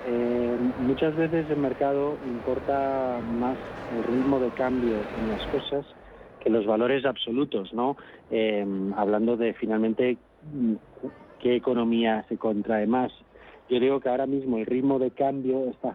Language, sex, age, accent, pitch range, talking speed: Spanish, male, 40-59, Spanish, 110-135 Hz, 145 wpm